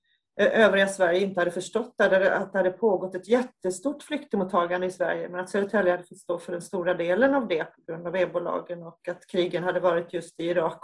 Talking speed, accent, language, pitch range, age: 210 wpm, native, Swedish, 180-210 Hz, 30-49